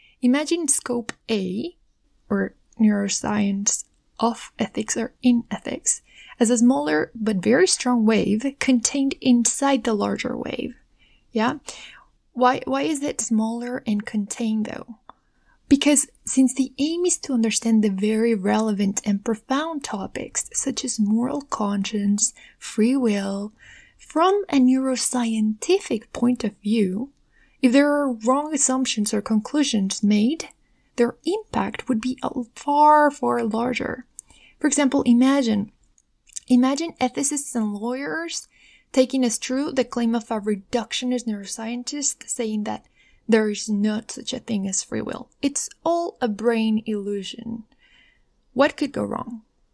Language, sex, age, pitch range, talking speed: English, female, 20-39, 220-275 Hz, 130 wpm